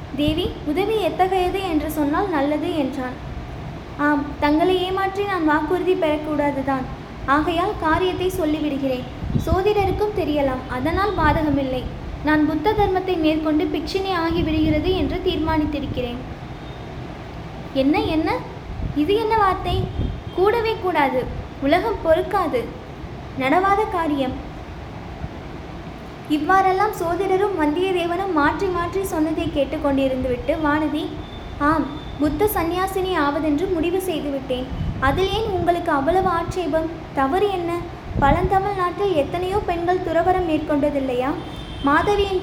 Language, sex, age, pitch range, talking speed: Tamil, female, 20-39, 300-370 Hz, 100 wpm